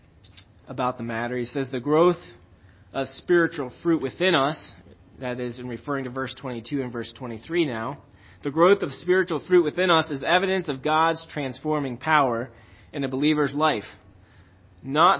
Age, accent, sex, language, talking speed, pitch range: 30-49, American, male, English, 160 wpm, 110-150 Hz